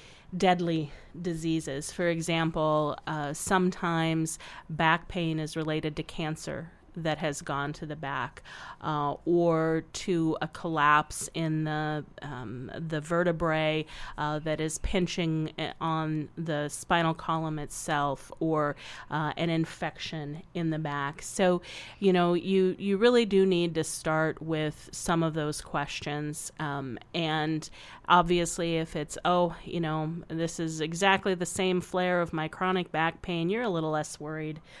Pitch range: 155-180 Hz